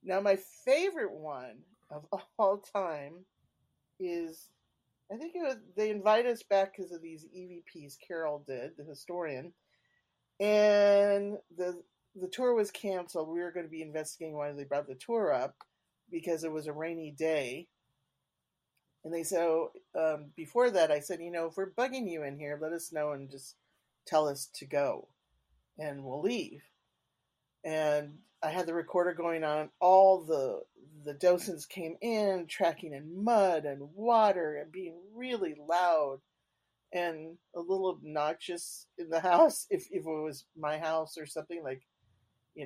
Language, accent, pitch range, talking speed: English, American, 155-195 Hz, 165 wpm